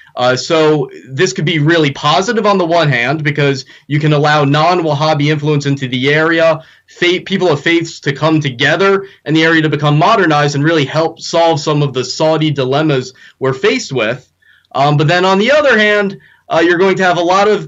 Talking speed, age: 200 wpm, 20-39